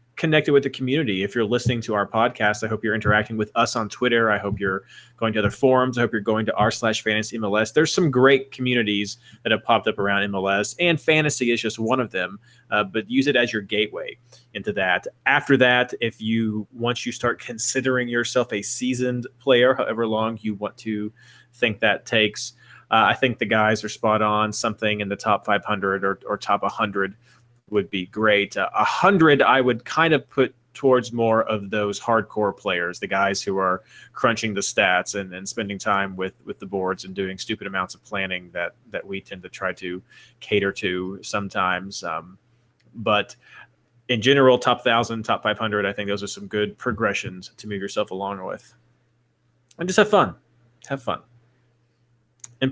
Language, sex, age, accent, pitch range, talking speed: English, male, 30-49, American, 105-125 Hz, 195 wpm